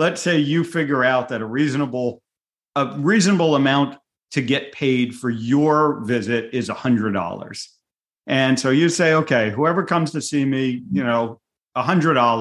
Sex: male